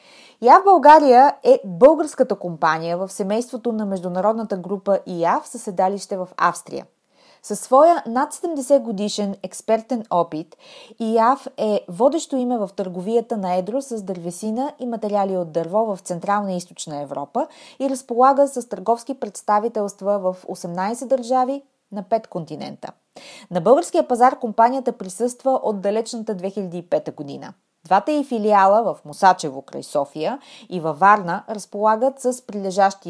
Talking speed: 135 wpm